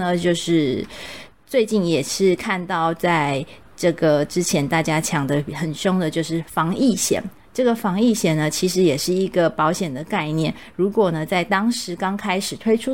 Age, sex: 30-49, female